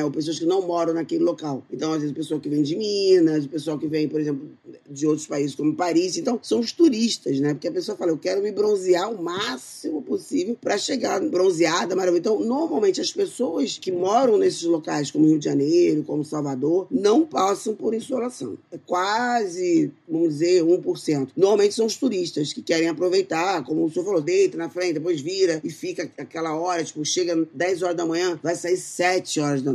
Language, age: Portuguese, 20-39